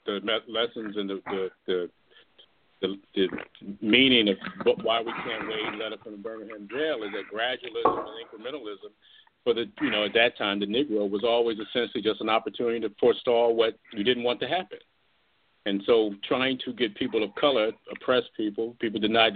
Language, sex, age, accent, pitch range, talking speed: English, male, 50-69, American, 105-130 Hz, 185 wpm